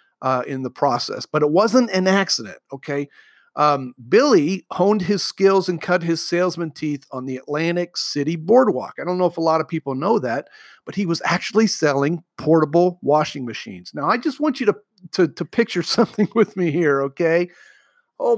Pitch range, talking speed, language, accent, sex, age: 145-190 Hz, 190 wpm, English, American, male, 40-59